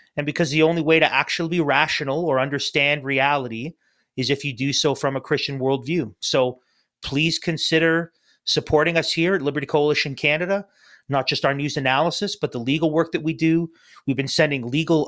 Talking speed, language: 185 wpm, English